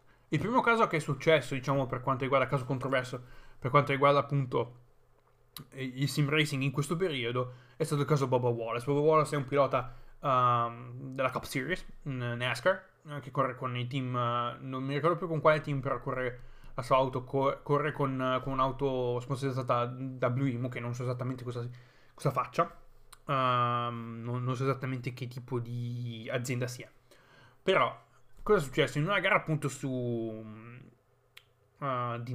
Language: Italian